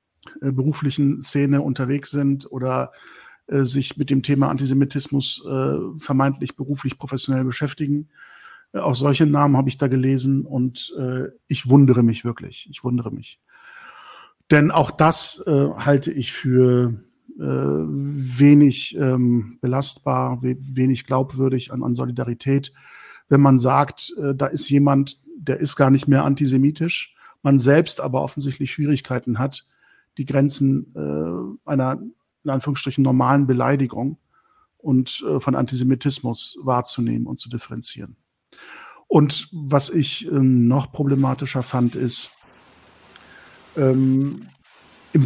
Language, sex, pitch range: German, male, 130-145 Hz